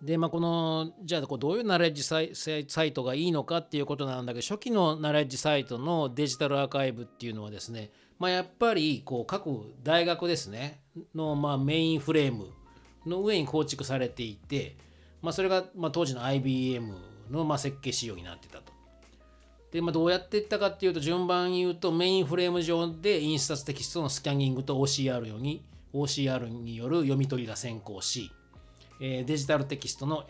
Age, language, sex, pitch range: 40-59, Japanese, male, 120-165 Hz